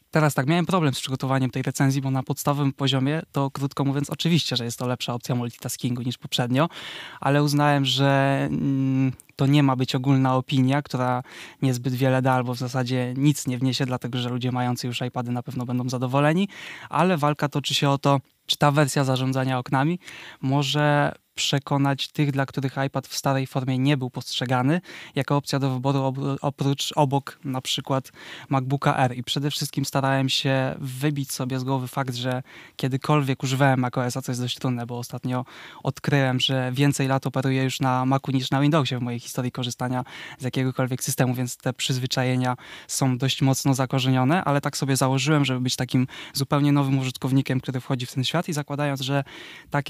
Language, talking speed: Polish, 185 wpm